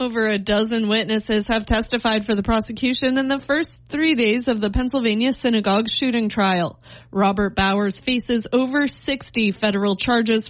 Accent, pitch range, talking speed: American, 195-245 Hz, 155 wpm